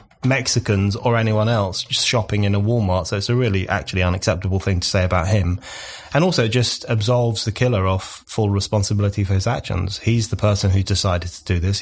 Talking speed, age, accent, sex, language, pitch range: 200 wpm, 20-39, British, male, English, 100-120 Hz